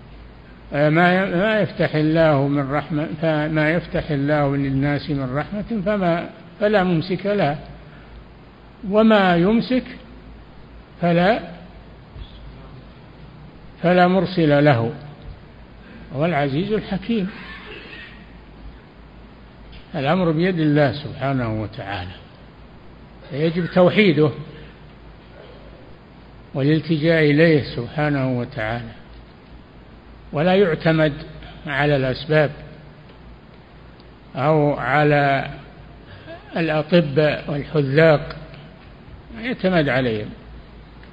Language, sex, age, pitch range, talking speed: Arabic, male, 60-79, 140-170 Hz, 65 wpm